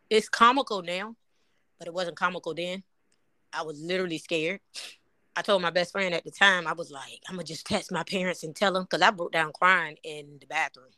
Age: 20-39